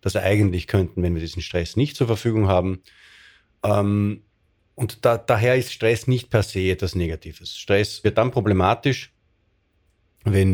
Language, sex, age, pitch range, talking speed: German, male, 30-49, 95-125 Hz, 150 wpm